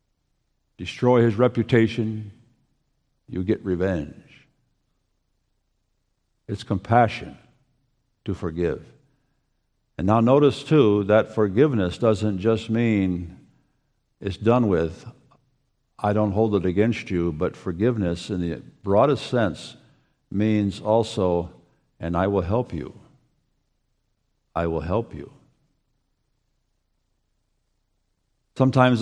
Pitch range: 100-125 Hz